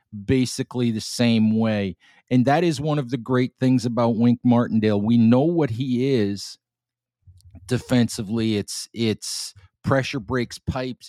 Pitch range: 115-130 Hz